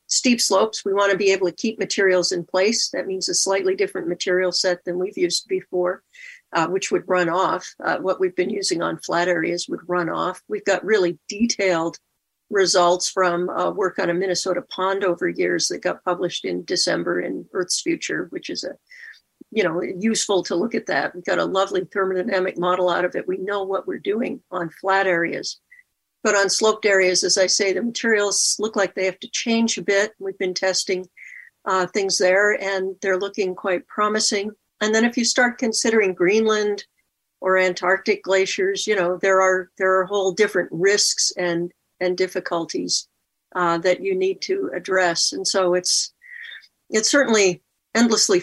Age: 50-69